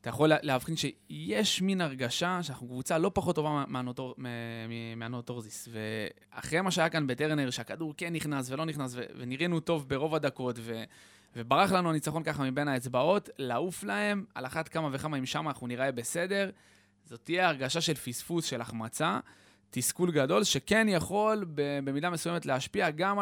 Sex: male